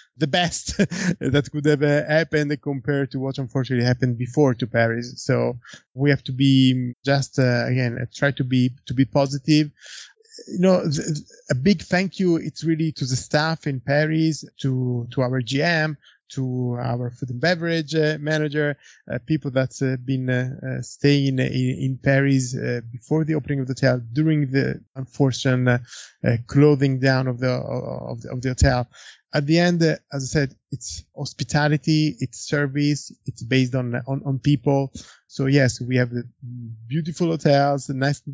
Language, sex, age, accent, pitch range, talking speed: English, male, 20-39, Italian, 125-145 Hz, 180 wpm